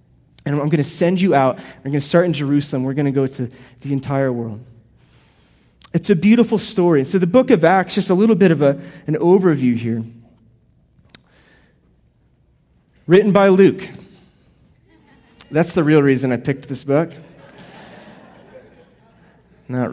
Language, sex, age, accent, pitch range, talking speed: English, male, 30-49, American, 130-165 Hz, 155 wpm